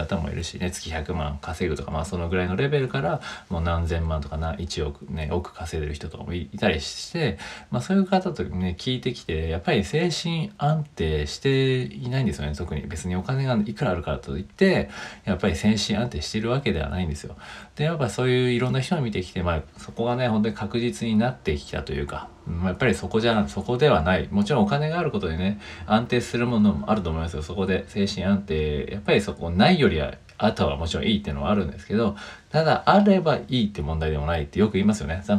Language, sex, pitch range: Japanese, male, 80-115 Hz